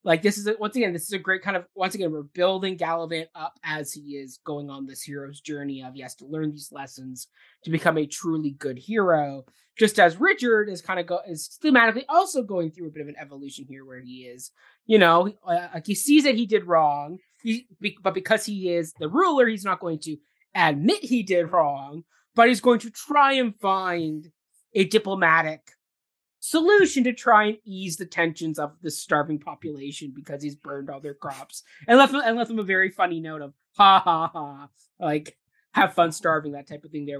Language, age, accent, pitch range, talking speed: English, 20-39, American, 150-210 Hz, 215 wpm